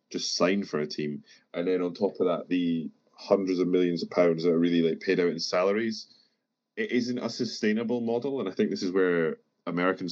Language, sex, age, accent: English, male, 20-39, British